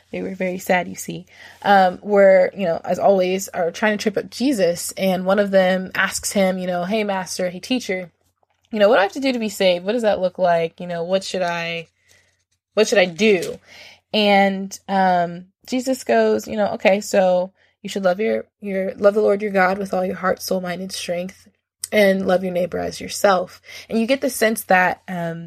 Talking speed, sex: 220 wpm, female